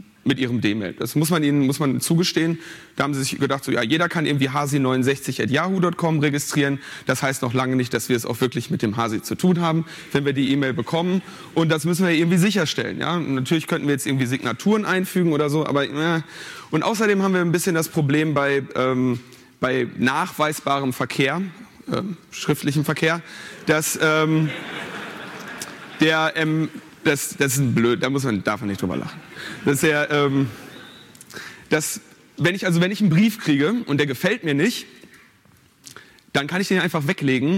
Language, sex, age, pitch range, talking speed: German, male, 30-49, 135-175 Hz, 190 wpm